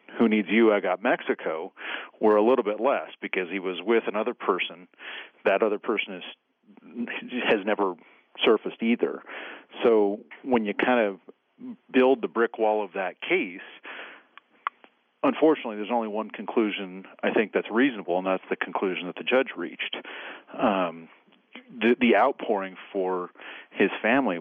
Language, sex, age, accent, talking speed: English, male, 40-59, American, 145 wpm